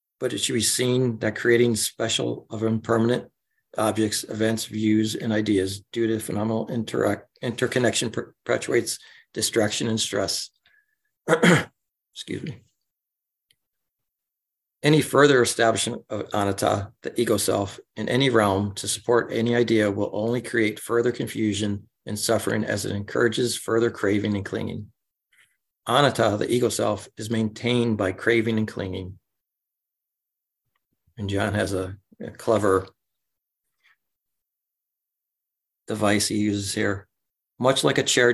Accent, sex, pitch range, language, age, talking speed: American, male, 105-120 Hz, English, 50-69, 125 wpm